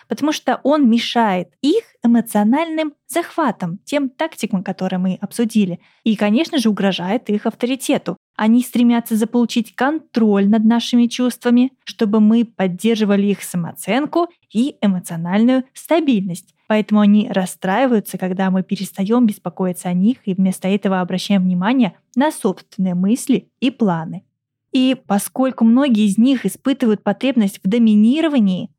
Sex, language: female, Russian